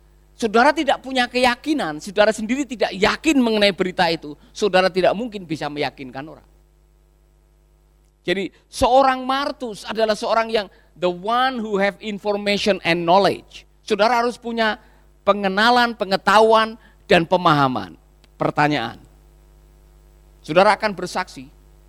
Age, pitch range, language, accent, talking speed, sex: 50-69, 165-220 Hz, Indonesian, native, 110 wpm, male